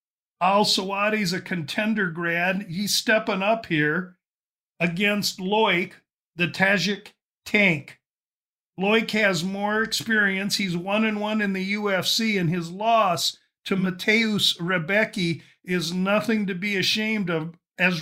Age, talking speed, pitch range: 50-69, 125 wpm, 180-210 Hz